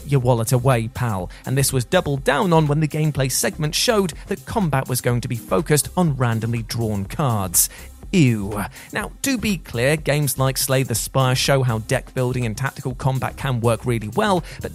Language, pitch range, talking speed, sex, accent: English, 120-160 Hz, 195 wpm, male, British